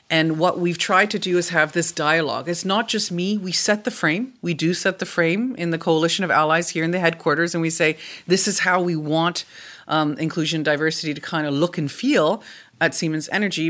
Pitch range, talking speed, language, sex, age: 155-185 Hz, 230 wpm, English, female, 40-59